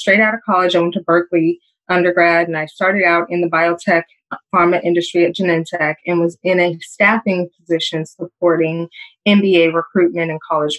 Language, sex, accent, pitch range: English, female, American, 170-195 Hz